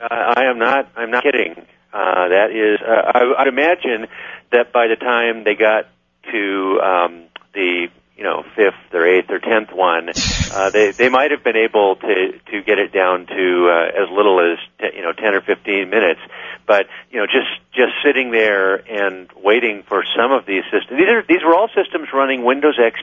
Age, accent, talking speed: 50-69, American, 205 wpm